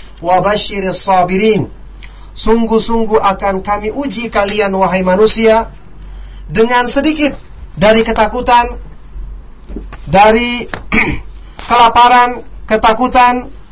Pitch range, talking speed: 200-245 Hz, 65 wpm